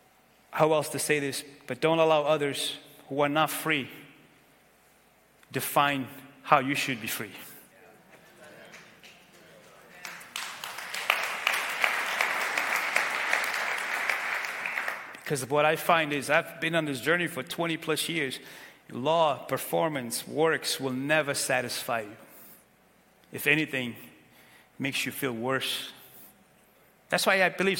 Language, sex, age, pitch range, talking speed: English, male, 30-49, 140-165 Hz, 110 wpm